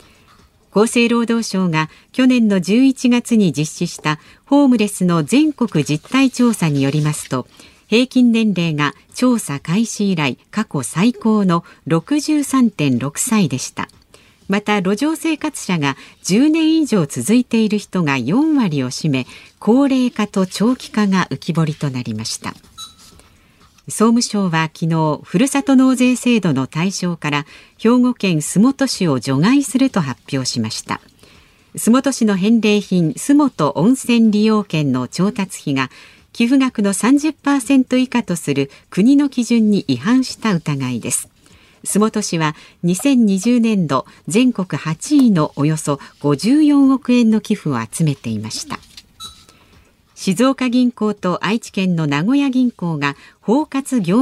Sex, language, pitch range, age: female, Japanese, 150-245 Hz, 50-69